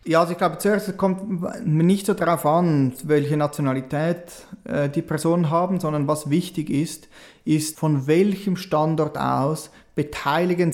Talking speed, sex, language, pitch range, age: 150 wpm, male, German, 140-175 Hz, 30-49